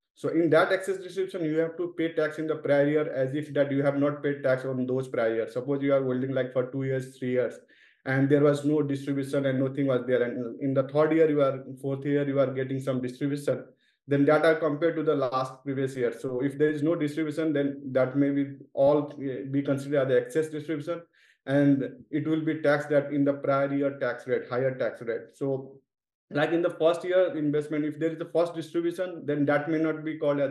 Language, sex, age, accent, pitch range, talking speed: English, male, 20-39, Indian, 135-150 Hz, 235 wpm